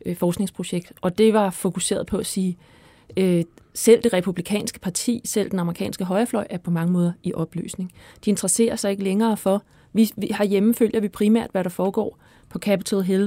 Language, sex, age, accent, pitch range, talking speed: Danish, female, 30-49, native, 185-220 Hz, 185 wpm